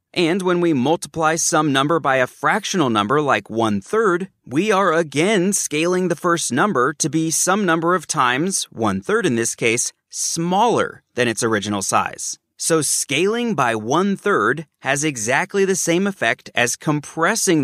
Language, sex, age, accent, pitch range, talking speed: English, male, 30-49, American, 135-185 Hz, 155 wpm